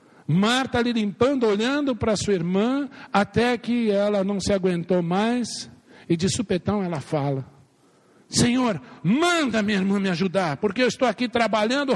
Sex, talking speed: male, 150 wpm